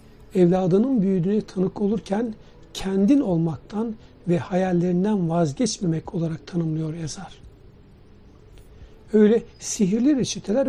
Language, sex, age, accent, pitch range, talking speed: Turkish, male, 60-79, native, 165-215 Hz, 85 wpm